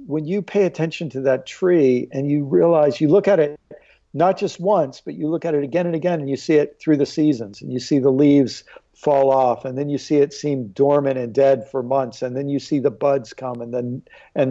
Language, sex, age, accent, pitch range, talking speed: English, male, 50-69, American, 135-165 Hz, 250 wpm